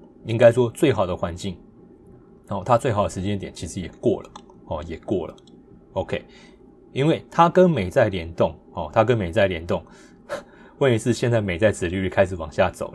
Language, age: Chinese, 20-39